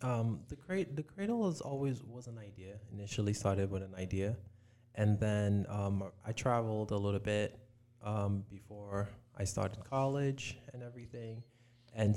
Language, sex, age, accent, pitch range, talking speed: English, male, 20-39, American, 100-120 Hz, 155 wpm